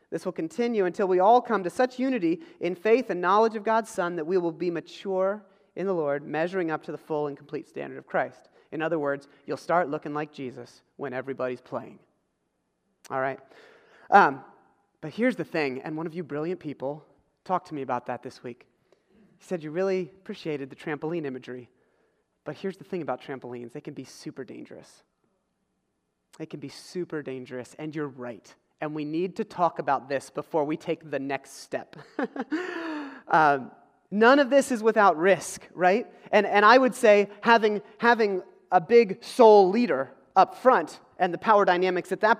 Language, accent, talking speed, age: English, American, 190 wpm, 30-49